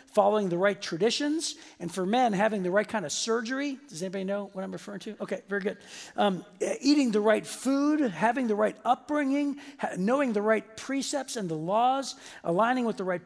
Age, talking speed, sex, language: 40-59, 195 wpm, male, English